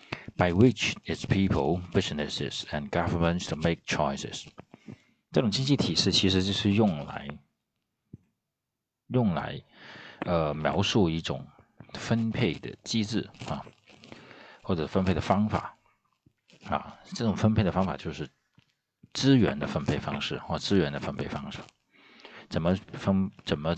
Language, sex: Chinese, male